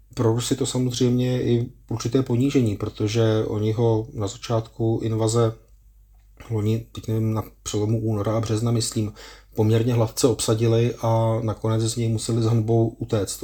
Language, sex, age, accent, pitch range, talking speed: Czech, male, 30-49, native, 110-120 Hz, 150 wpm